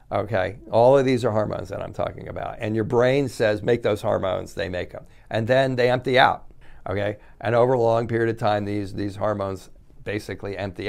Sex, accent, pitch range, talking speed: male, American, 95-115 Hz, 210 wpm